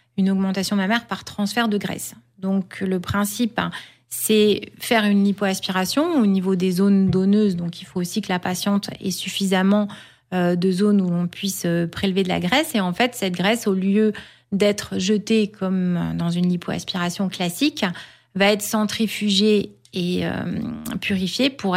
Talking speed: 155 wpm